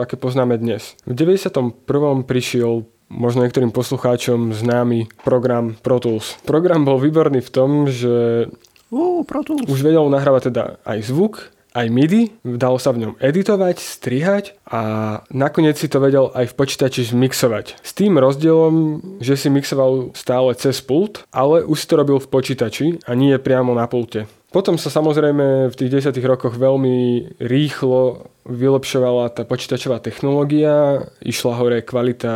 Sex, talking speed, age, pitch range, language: male, 145 wpm, 20-39, 120-140 Hz, Slovak